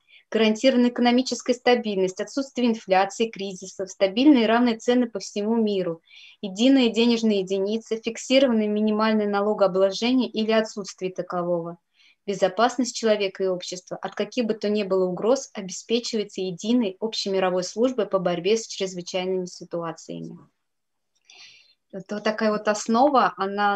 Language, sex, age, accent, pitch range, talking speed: Russian, female, 20-39, native, 190-225 Hz, 120 wpm